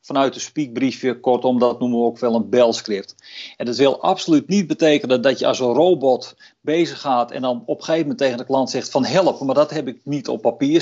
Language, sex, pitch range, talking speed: Dutch, male, 125-165 Hz, 240 wpm